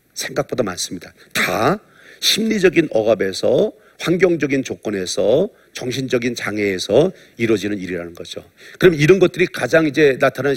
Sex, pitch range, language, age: male, 110-160 Hz, Korean, 50-69